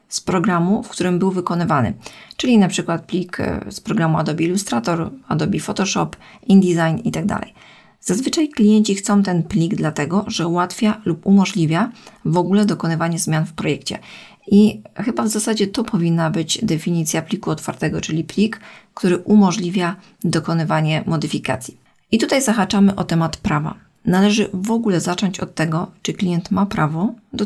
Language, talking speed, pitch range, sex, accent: Polish, 150 wpm, 170-210 Hz, female, native